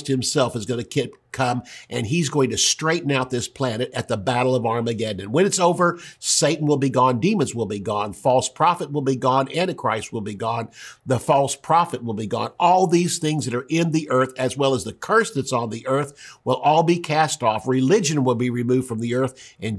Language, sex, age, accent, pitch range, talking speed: English, male, 50-69, American, 125-160 Hz, 225 wpm